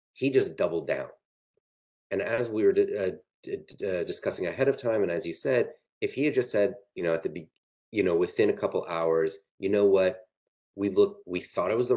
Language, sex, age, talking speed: English, male, 30-49, 230 wpm